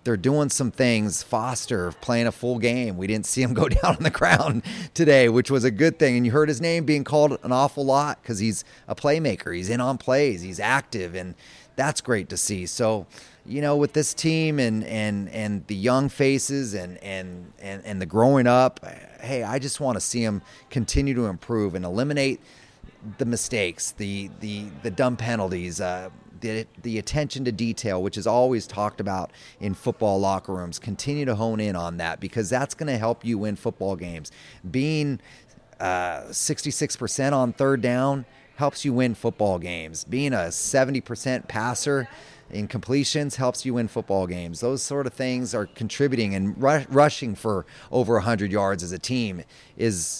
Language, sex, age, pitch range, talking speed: English, male, 30-49, 100-135 Hz, 185 wpm